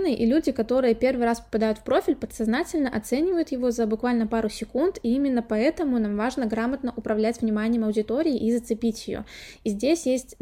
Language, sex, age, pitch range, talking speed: Russian, female, 20-39, 225-270 Hz, 175 wpm